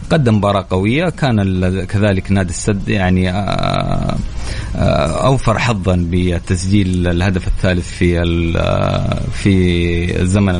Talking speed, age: 100 wpm, 30-49